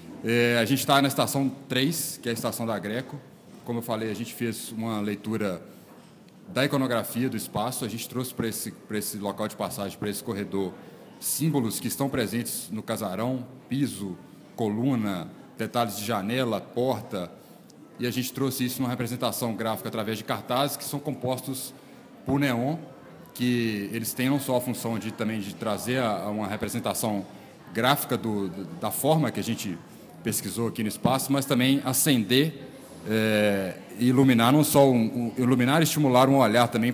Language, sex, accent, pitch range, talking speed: Portuguese, male, Brazilian, 110-130 Hz, 165 wpm